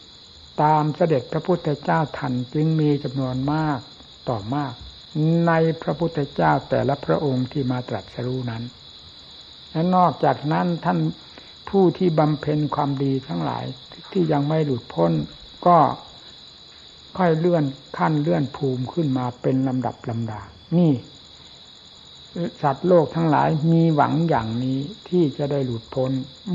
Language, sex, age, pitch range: Thai, male, 60-79, 125-160 Hz